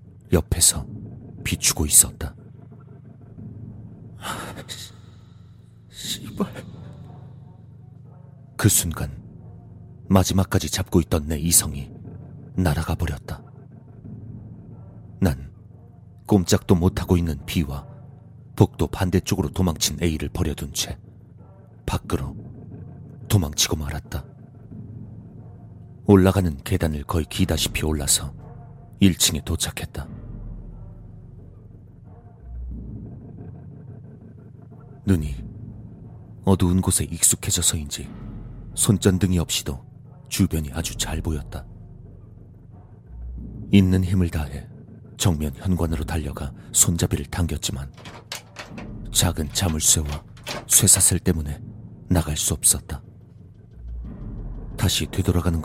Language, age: Korean, 40-59